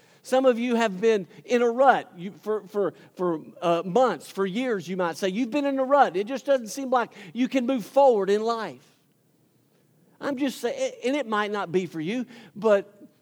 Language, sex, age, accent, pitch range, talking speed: English, male, 50-69, American, 155-220 Hz, 195 wpm